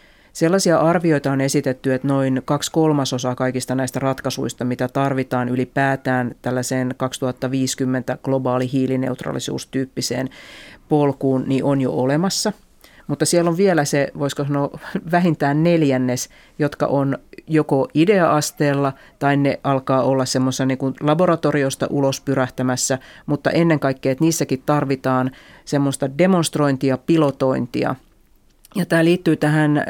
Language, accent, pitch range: Finnish, native, 130-150 Hz